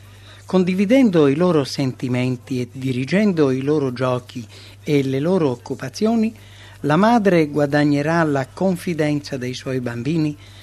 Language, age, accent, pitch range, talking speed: English, 60-79, Italian, 115-150 Hz, 120 wpm